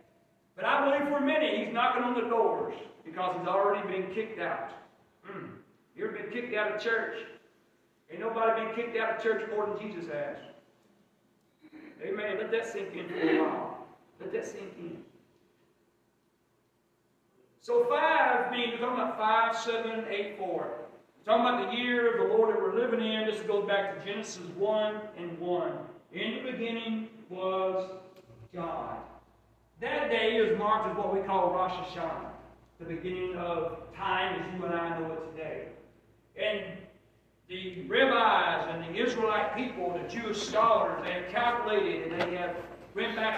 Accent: American